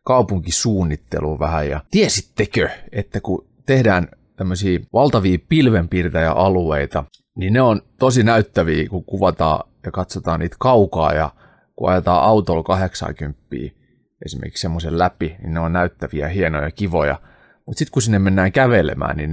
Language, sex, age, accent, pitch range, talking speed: Finnish, male, 30-49, native, 85-110 Hz, 130 wpm